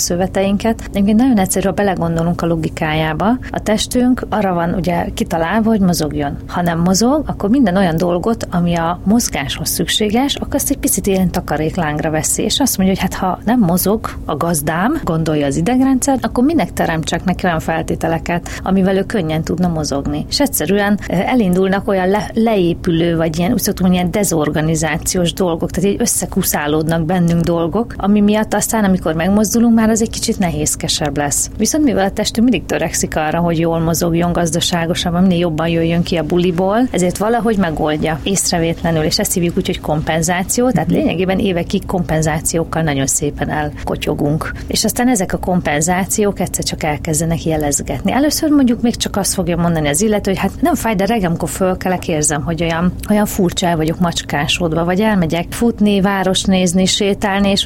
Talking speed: 170 wpm